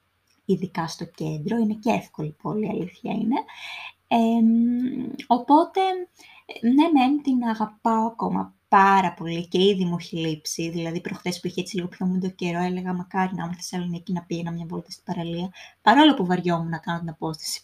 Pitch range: 180-265 Hz